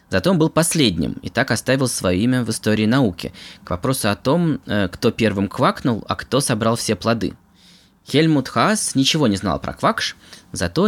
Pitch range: 90-130 Hz